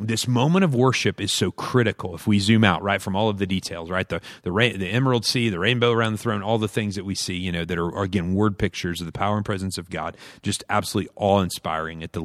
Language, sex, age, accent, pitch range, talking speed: English, male, 40-59, American, 95-125 Hz, 270 wpm